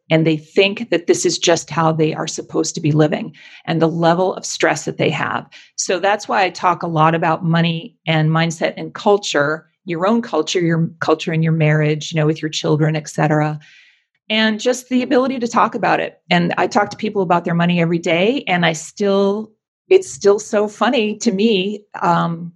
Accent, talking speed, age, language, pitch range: American, 205 wpm, 40-59, English, 160-210 Hz